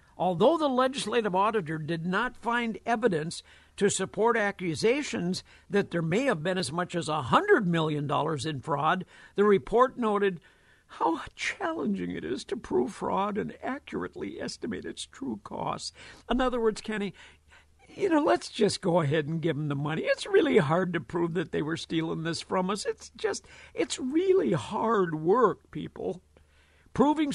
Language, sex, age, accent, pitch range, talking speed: English, male, 60-79, American, 165-235 Hz, 160 wpm